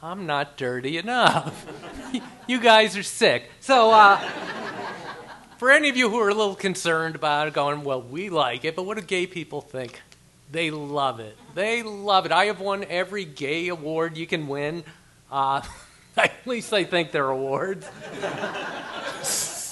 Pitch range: 140-185 Hz